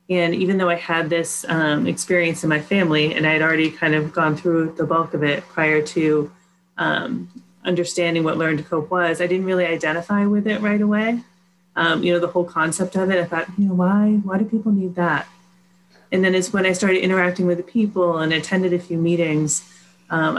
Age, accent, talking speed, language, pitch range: 30-49, American, 220 wpm, English, 160-185 Hz